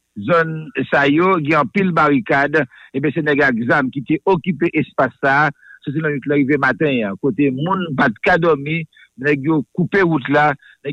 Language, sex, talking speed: English, male, 160 wpm